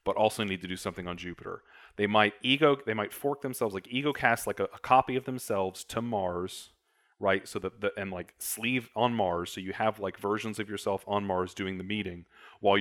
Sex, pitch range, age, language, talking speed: male, 95-110 Hz, 30-49, English, 225 wpm